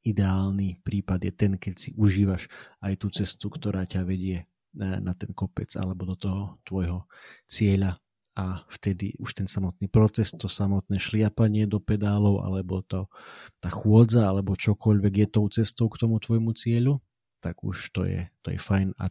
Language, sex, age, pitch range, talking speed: Slovak, male, 40-59, 95-110 Hz, 165 wpm